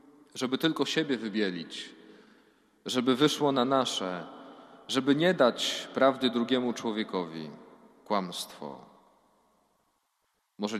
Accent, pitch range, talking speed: native, 110-140 Hz, 90 wpm